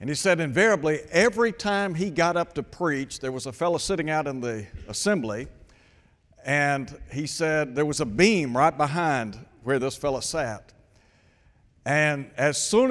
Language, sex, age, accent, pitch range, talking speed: English, male, 60-79, American, 130-155 Hz, 165 wpm